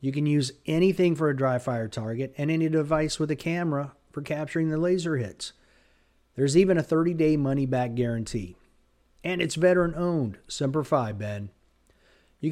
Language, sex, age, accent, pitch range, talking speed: English, male, 50-69, American, 125-165 Hz, 170 wpm